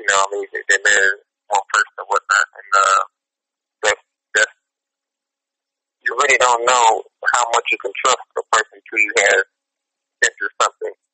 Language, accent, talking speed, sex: English, American, 160 wpm, male